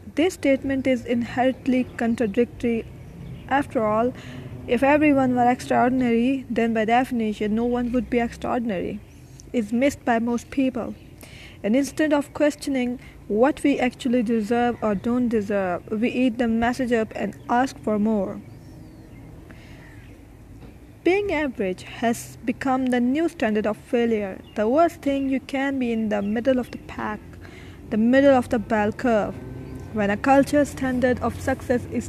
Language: English